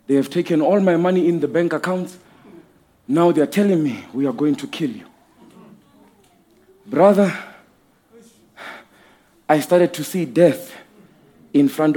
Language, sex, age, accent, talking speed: English, male, 40-59, South African, 145 wpm